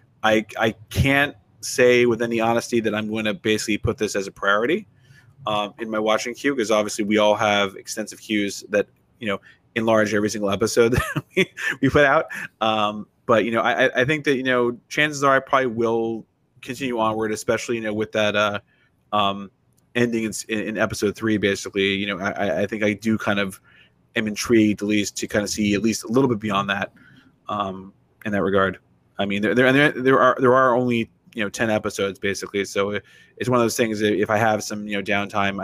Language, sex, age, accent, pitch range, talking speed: English, male, 30-49, American, 100-120 Hz, 215 wpm